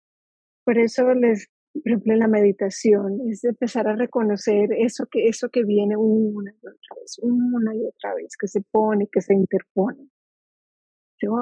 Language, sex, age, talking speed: English, female, 40-59, 165 wpm